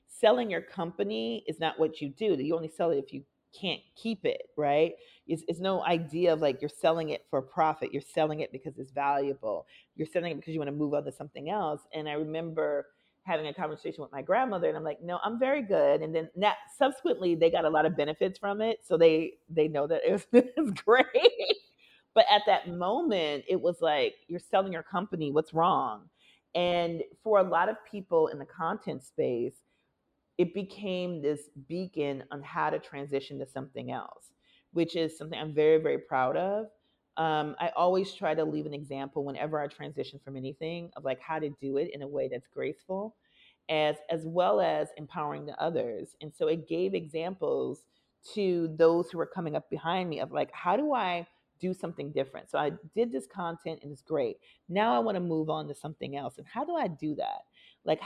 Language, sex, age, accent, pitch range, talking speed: English, female, 40-59, American, 150-190 Hz, 210 wpm